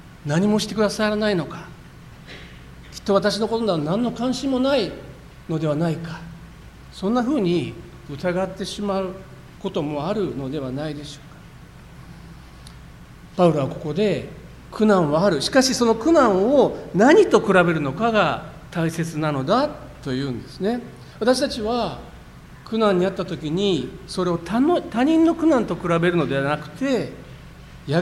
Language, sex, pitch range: Japanese, male, 145-205 Hz